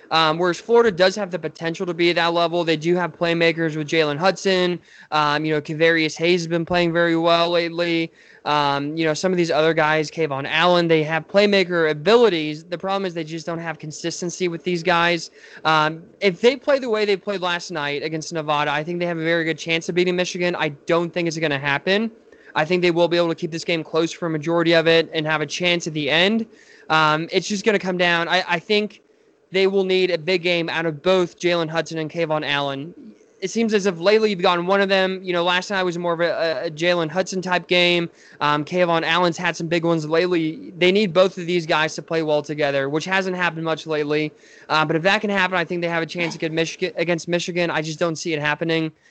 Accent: American